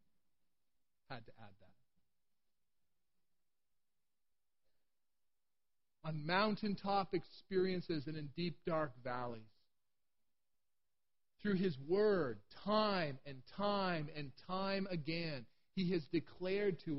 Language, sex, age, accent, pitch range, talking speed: English, male, 40-59, American, 115-190 Hz, 90 wpm